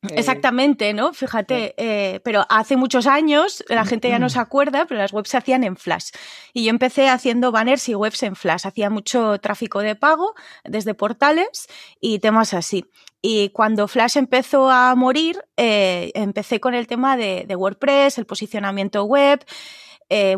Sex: female